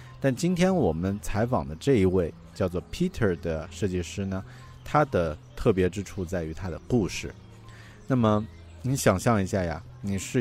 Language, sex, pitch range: Chinese, male, 90-115 Hz